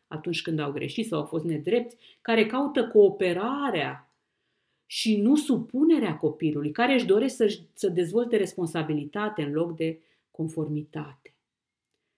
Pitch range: 165-250 Hz